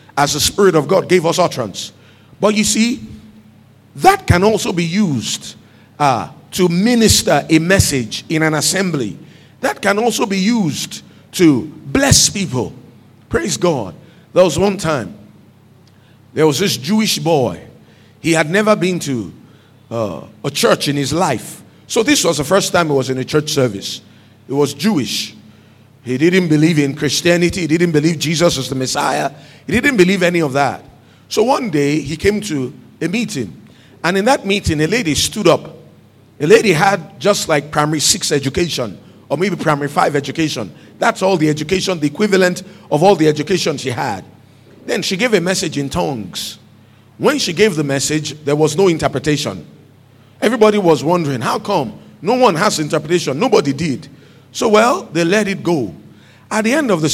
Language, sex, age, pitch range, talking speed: English, male, 50-69, 140-190 Hz, 175 wpm